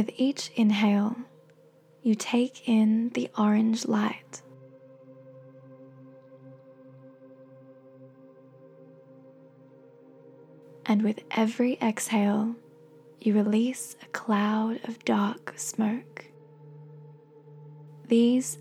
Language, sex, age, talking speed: English, female, 10-29, 70 wpm